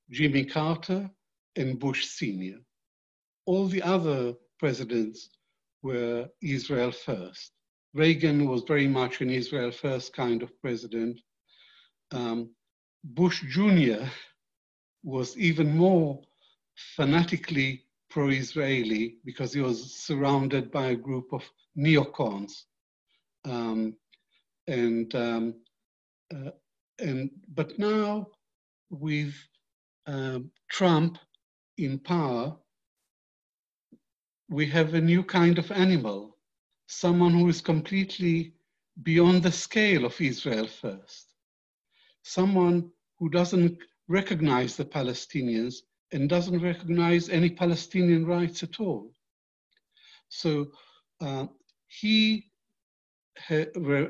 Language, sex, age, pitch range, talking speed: English, male, 60-79, 125-170 Hz, 95 wpm